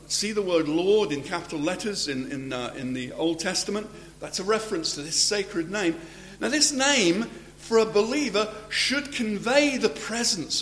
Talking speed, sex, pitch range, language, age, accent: 175 wpm, male, 150-215 Hz, English, 50-69, British